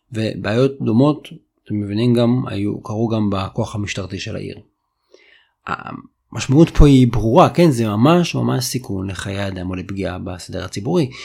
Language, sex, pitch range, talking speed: Hebrew, male, 100-135 Hz, 135 wpm